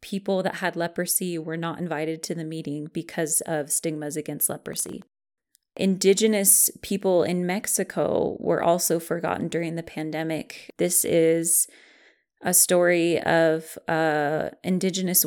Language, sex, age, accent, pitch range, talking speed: English, female, 20-39, American, 160-190 Hz, 125 wpm